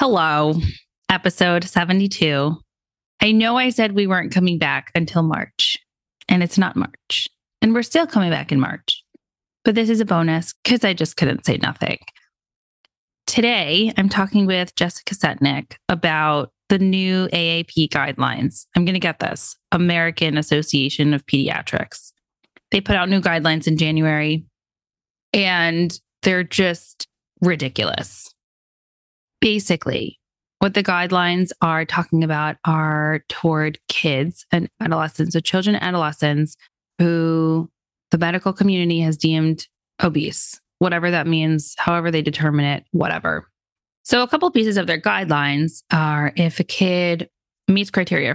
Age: 20-39